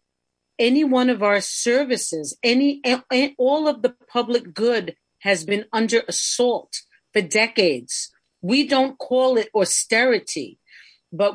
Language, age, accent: English, 40-59, American